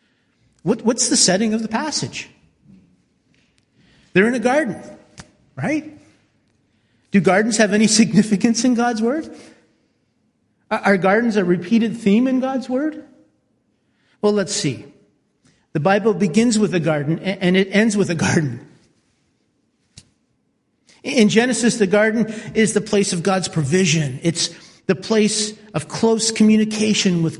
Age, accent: 50-69, American